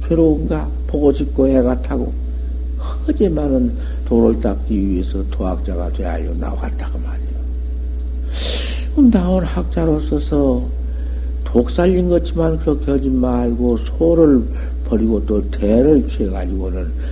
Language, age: Korean, 60-79